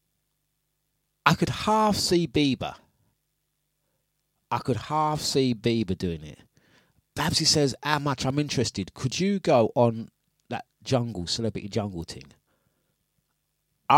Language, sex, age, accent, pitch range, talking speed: English, male, 30-49, British, 110-145 Hz, 120 wpm